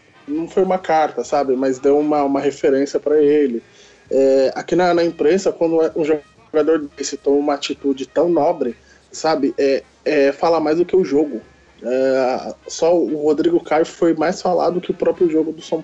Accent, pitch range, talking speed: Brazilian, 140-170 Hz, 185 wpm